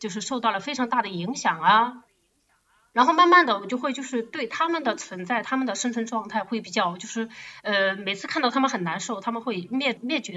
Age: 30-49